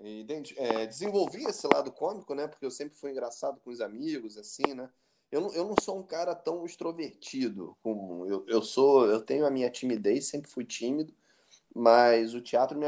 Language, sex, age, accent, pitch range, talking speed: Portuguese, male, 20-39, Brazilian, 110-145 Hz, 190 wpm